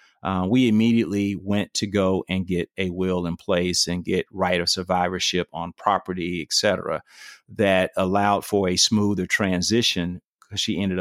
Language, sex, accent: English, male, American